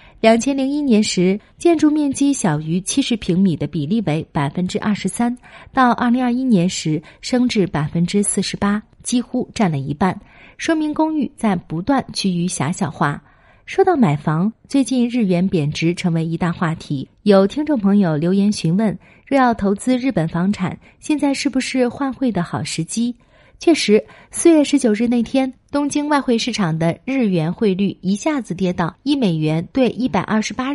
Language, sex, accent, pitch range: Chinese, female, native, 170-255 Hz